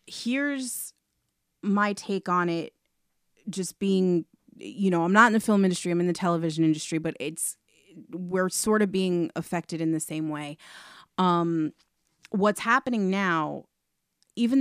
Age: 30-49